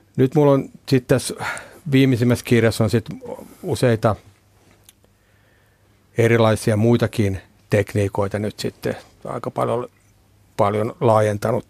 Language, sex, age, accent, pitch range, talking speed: Finnish, male, 60-79, native, 100-120 Hz, 95 wpm